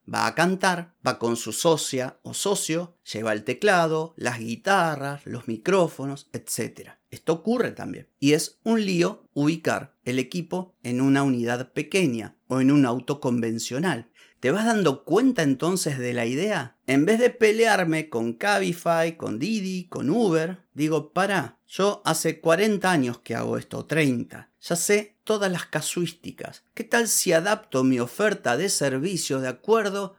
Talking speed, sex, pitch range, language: 155 wpm, male, 135-185 Hz, Spanish